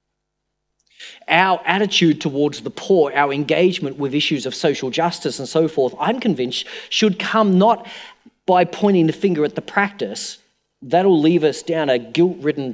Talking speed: 155 wpm